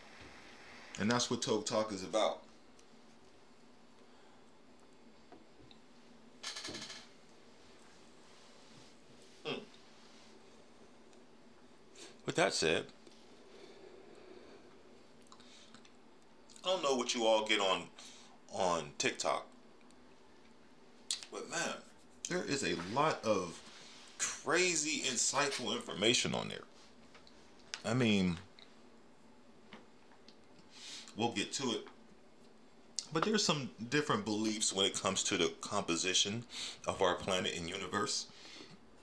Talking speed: 85 wpm